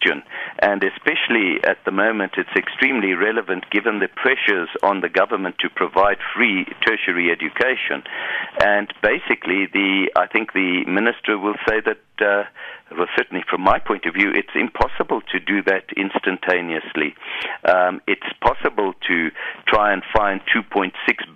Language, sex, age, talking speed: English, male, 50-69, 140 wpm